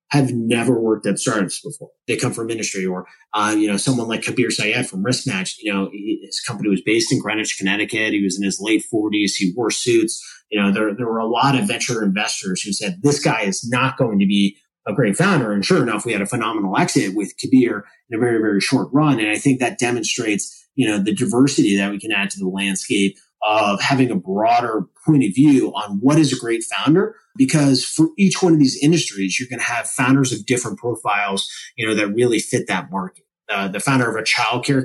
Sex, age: male, 30-49